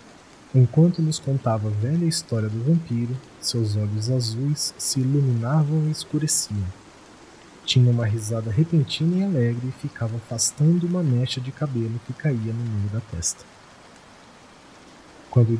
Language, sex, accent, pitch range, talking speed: Portuguese, male, Brazilian, 115-145 Hz, 135 wpm